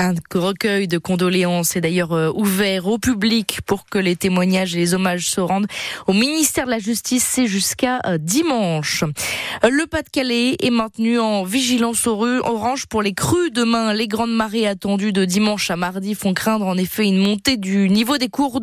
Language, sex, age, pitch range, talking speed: French, female, 20-39, 195-255 Hz, 185 wpm